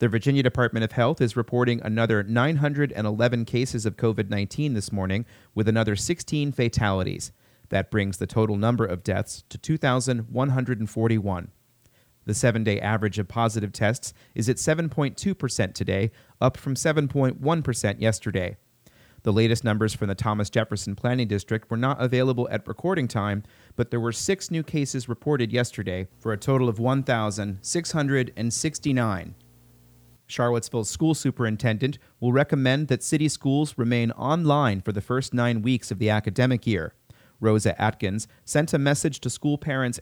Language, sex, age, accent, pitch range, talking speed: English, male, 30-49, American, 105-130 Hz, 145 wpm